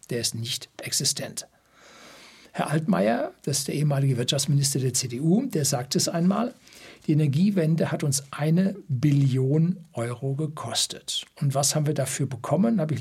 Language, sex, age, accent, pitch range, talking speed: German, male, 60-79, German, 135-165 Hz, 150 wpm